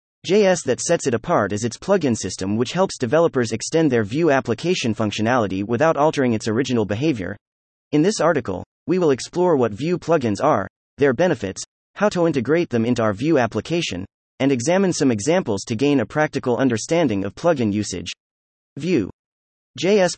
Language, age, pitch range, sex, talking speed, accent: English, 30-49, 110-160 Hz, male, 165 wpm, American